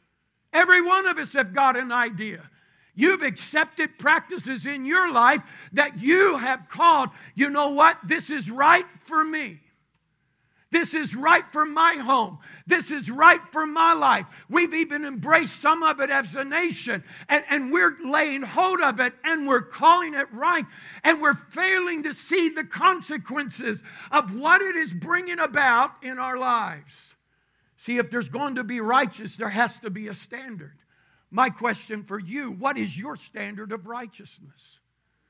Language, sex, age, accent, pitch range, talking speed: English, male, 60-79, American, 240-325 Hz, 165 wpm